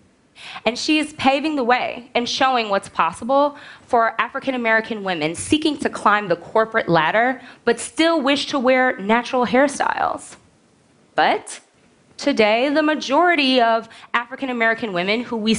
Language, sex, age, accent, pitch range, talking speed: Russian, female, 20-39, American, 200-265 Hz, 135 wpm